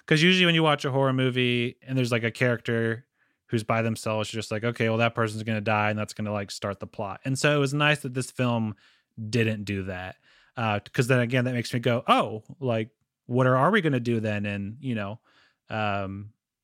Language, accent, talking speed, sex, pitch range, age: English, American, 240 wpm, male, 110-135 Hz, 30-49